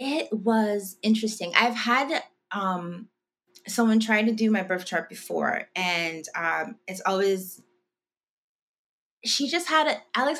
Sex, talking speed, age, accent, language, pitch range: female, 135 wpm, 20-39, American, English, 165-220 Hz